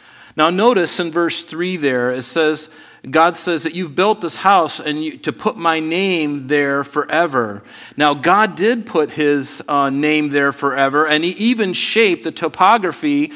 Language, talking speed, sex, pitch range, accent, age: English, 170 wpm, male, 135-175 Hz, American, 40-59